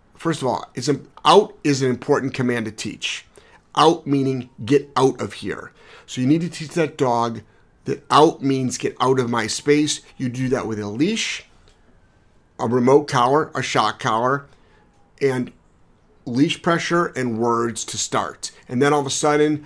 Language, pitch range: English, 120-150 Hz